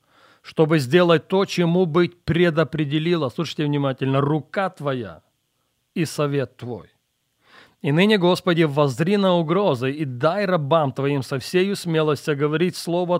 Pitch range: 125-155 Hz